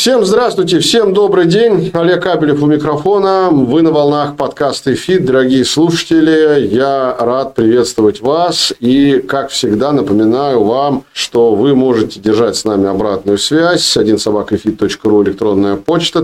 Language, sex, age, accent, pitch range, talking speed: Russian, male, 40-59, native, 105-150 Hz, 135 wpm